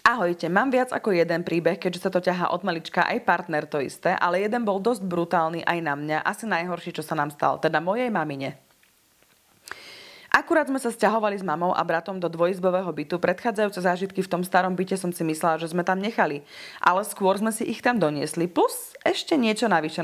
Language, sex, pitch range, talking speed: Slovak, female, 165-215 Hz, 205 wpm